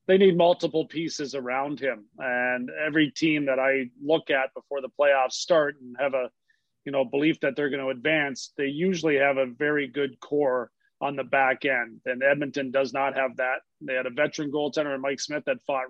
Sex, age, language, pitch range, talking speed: male, 30-49, English, 130-150 Hz, 205 wpm